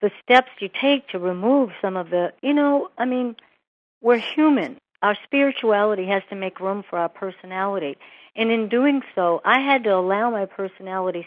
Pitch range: 180-220 Hz